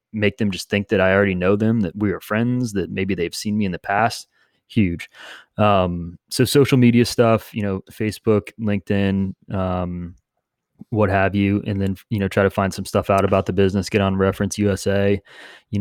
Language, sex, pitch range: English, male, 95-105 Hz